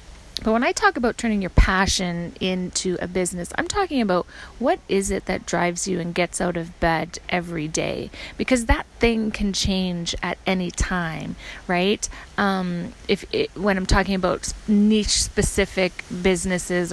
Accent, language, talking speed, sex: American, English, 165 wpm, female